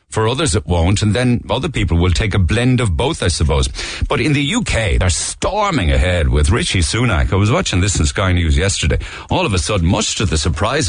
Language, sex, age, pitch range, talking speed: English, male, 60-79, 80-105 Hz, 230 wpm